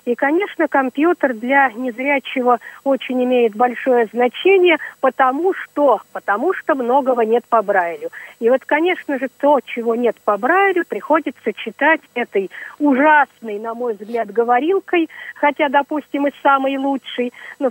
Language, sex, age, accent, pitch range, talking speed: Russian, female, 40-59, native, 240-300 Hz, 130 wpm